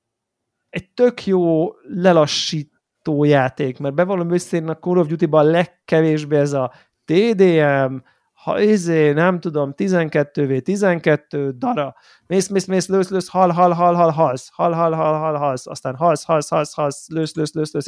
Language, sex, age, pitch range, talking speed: Hungarian, male, 30-49, 140-175 Hz, 150 wpm